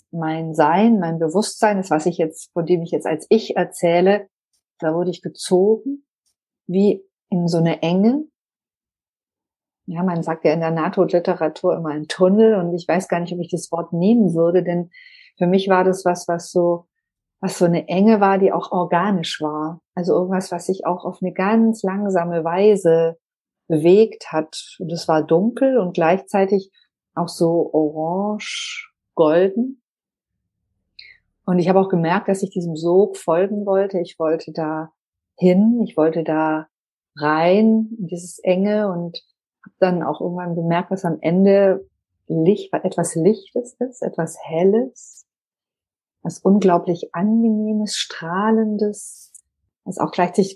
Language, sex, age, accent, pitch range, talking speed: German, female, 50-69, German, 165-200 Hz, 150 wpm